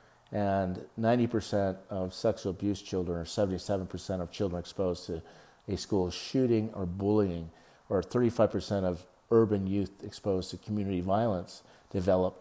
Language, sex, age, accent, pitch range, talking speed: English, male, 50-69, American, 90-105 Hz, 145 wpm